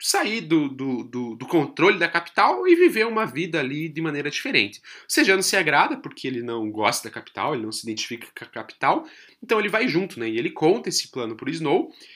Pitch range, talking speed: 120-170 Hz, 215 wpm